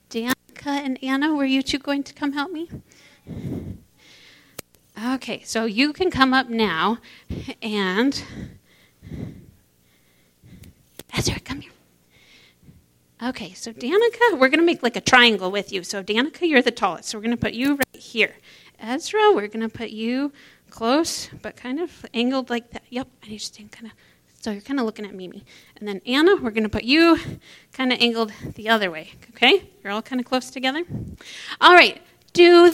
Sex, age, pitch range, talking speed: female, 30-49, 215-285 Hz, 180 wpm